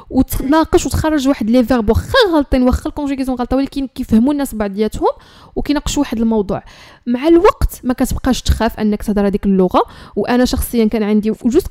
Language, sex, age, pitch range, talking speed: Arabic, female, 10-29, 220-275 Hz, 155 wpm